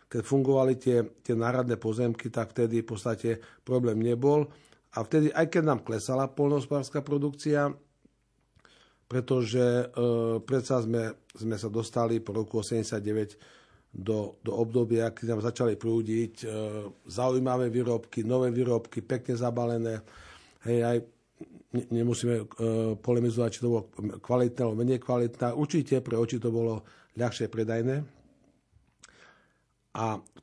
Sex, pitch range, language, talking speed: male, 115-130 Hz, Slovak, 130 wpm